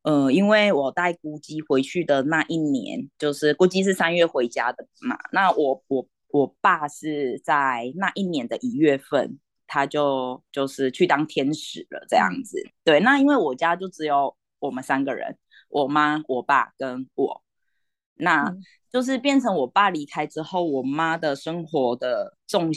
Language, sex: Chinese, female